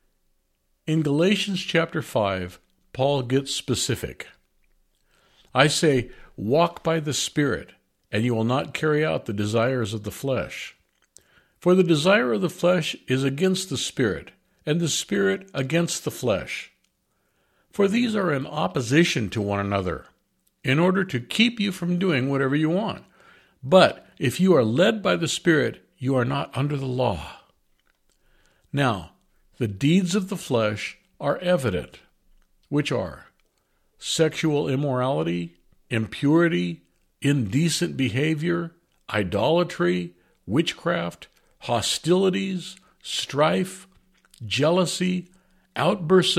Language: English